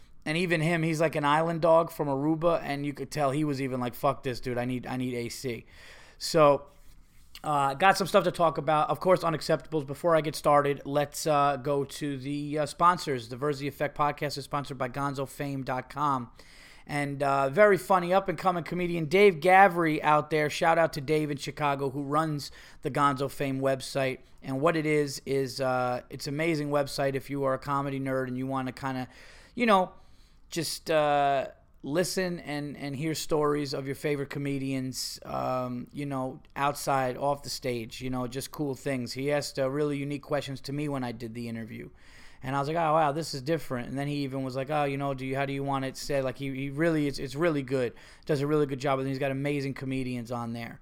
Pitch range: 135-155 Hz